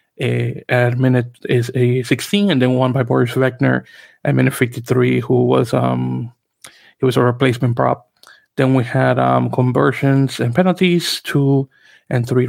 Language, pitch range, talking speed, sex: English, 120-135 Hz, 165 wpm, male